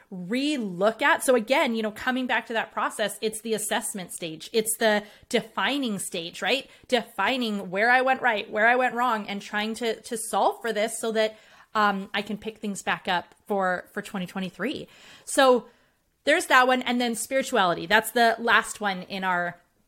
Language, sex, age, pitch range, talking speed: English, female, 30-49, 200-245 Hz, 195 wpm